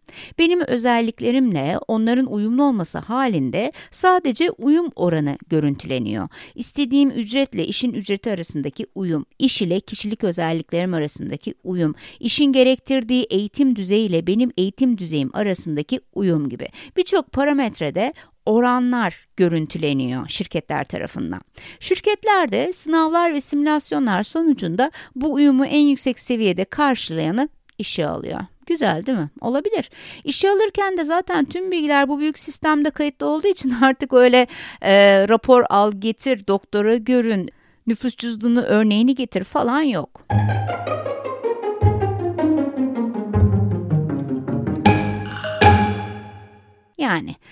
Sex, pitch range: female, 175-275 Hz